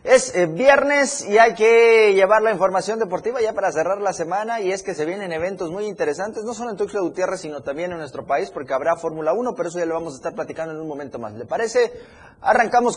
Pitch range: 150-210 Hz